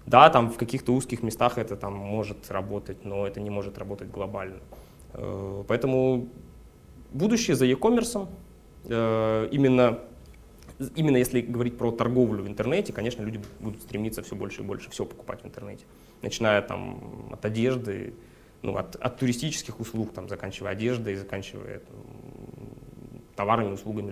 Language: Russian